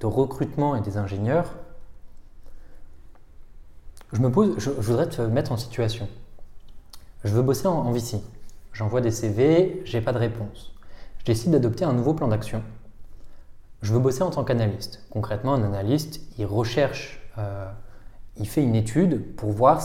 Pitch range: 105-140 Hz